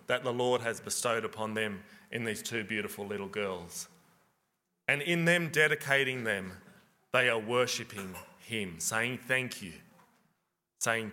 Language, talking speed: English, 140 wpm